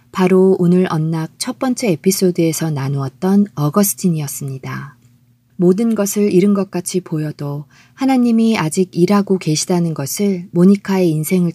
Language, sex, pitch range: Korean, female, 150-200 Hz